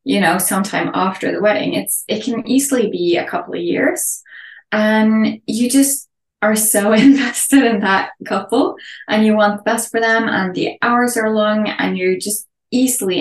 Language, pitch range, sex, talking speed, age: English, 195-250 Hz, female, 180 wpm, 10-29